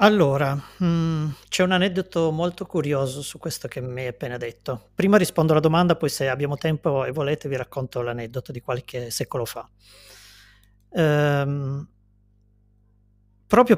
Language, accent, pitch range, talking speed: Italian, native, 125-160 Hz, 140 wpm